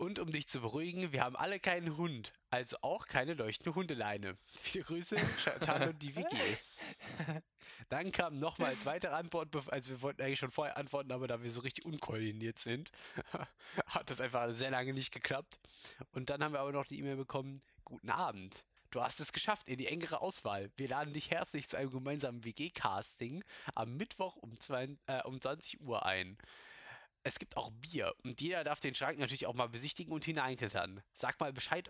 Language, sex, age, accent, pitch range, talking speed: German, male, 20-39, German, 125-160 Hz, 190 wpm